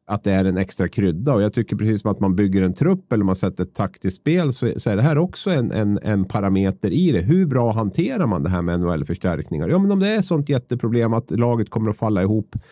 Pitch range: 95-140 Hz